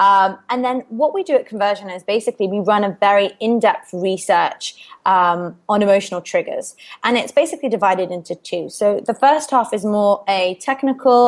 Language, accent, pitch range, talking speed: English, British, 185-235 Hz, 180 wpm